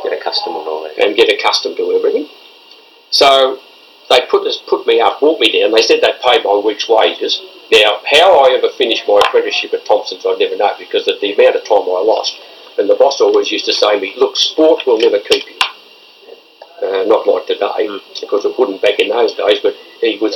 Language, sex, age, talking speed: English, male, 50-69, 210 wpm